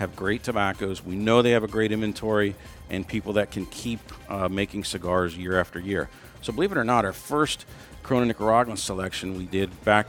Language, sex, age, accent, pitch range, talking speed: English, male, 50-69, American, 95-115 Hz, 200 wpm